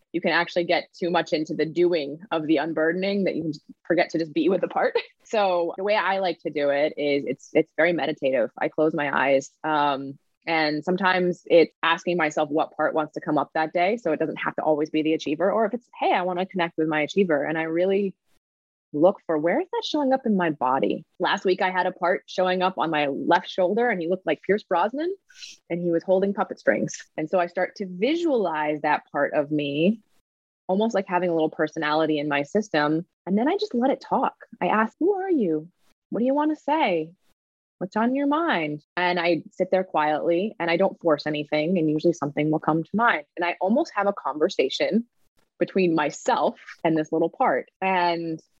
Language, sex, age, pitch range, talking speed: English, female, 20-39, 155-195 Hz, 220 wpm